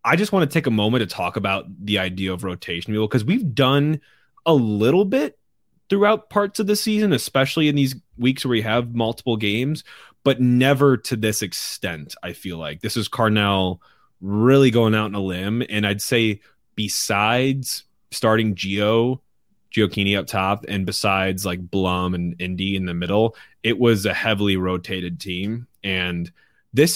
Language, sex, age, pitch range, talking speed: English, male, 20-39, 95-125 Hz, 175 wpm